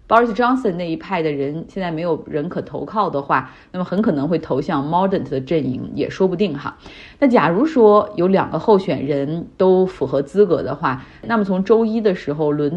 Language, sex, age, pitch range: Chinese, female, 30-49, 155-205 Hz